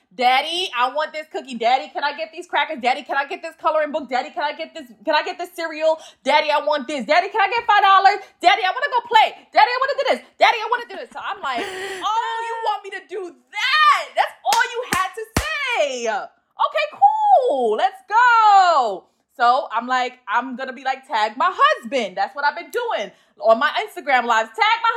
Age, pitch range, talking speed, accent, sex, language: 20-39, 255-360 Hz, 235 wpm, American, female, English